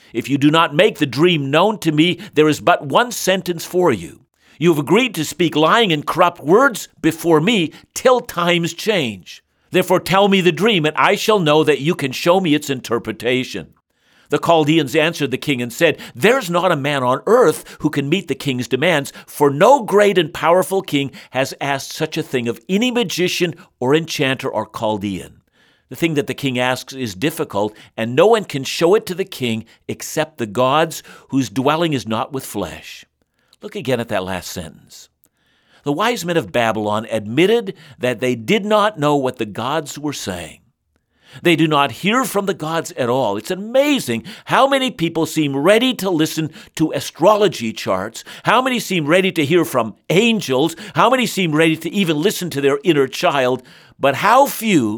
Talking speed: 190 wpm